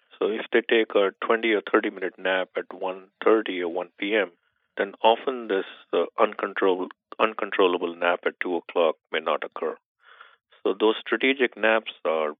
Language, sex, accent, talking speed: English, male, Indian, 145 wpm